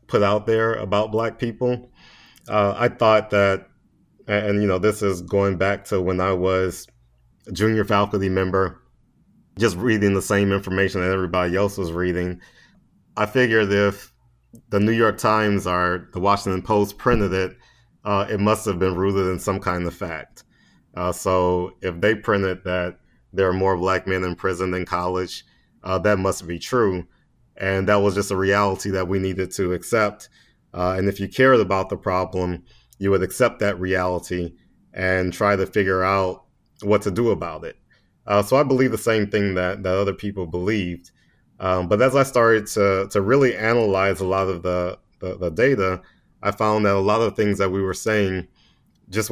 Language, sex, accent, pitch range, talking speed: English, male, American, 95-105 Hz, 185 wpm